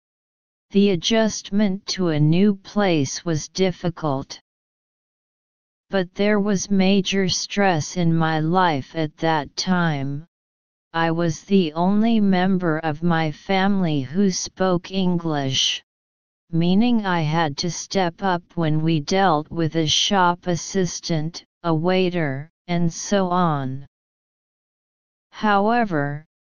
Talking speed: 110 wpm